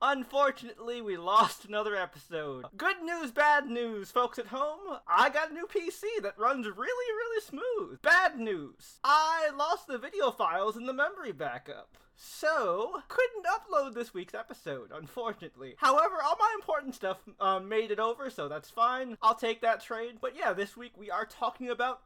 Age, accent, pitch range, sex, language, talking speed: 20-39, American, 200-280 Hz, male, English, 175 wpm